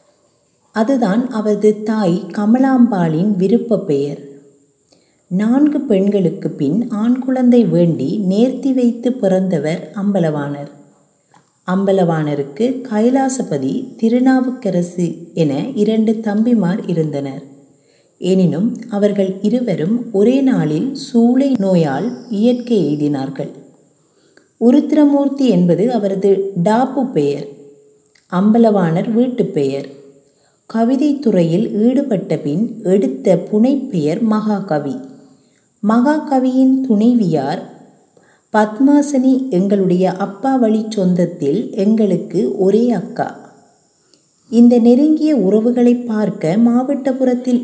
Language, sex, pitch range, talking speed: Tamil, female, 175-245 Hz, 75 wpm